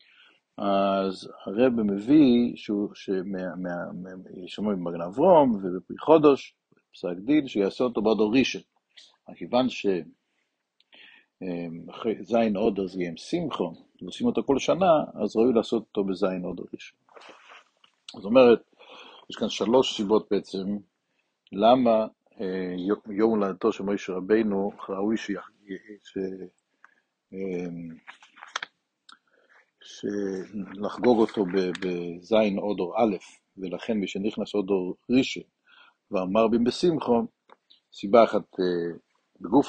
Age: 60-79